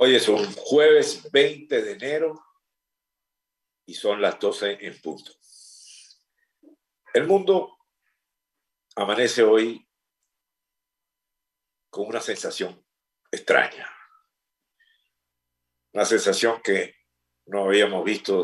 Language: Spanish